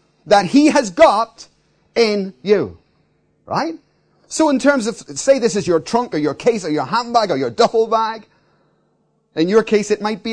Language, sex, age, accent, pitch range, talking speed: English, male, 30-49, British, 155-230 Hz, 185 wpm